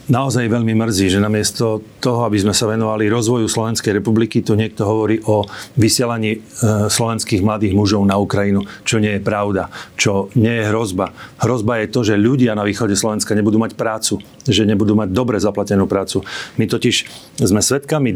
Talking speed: 170 wpm